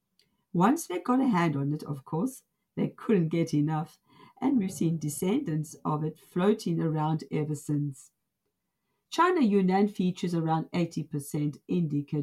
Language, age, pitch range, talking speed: English, 50-69, 155-210 Hz, 140 wpm